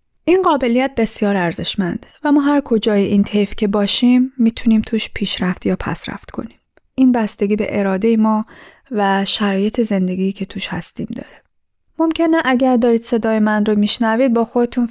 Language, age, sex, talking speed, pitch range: Persian, 20-39, female, 160 wpm, 200-250 Hz